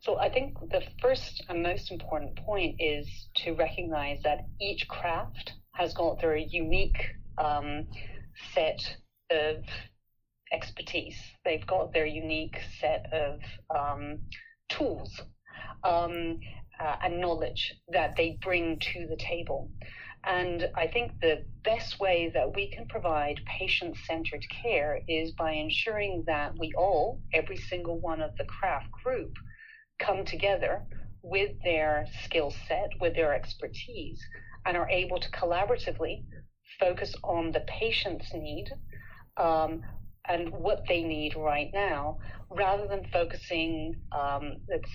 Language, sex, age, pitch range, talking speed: English, female, 40-59, 140-180 Hz, 130 wpm